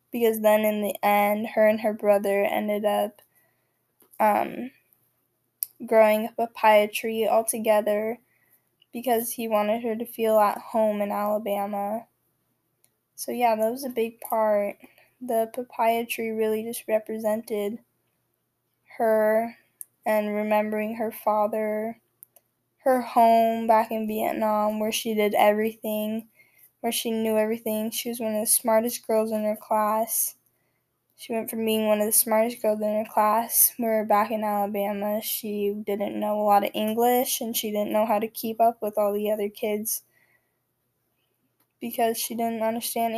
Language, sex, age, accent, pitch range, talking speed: English, female, 10-29, American, 210-230 Hz, 150 wpm